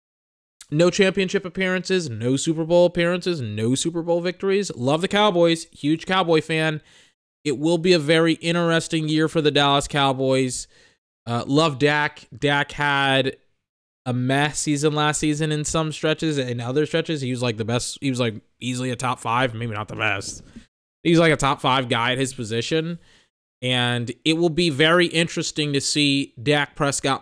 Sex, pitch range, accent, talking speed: male, 130-165 Hz, American, 175 wpm